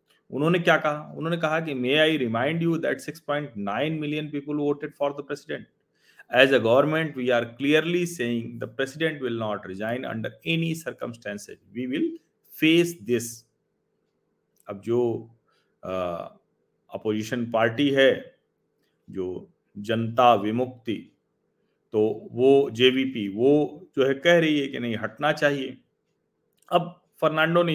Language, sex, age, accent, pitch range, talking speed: Hindi, male, 40-59, native, 110-155 Hz, 95 wpm